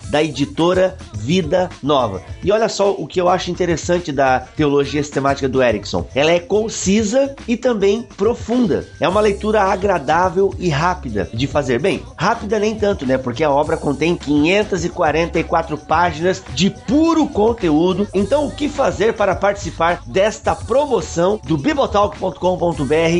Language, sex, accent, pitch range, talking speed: Portuguese, male, Brazilian, 150-205 Hz, 140 wpm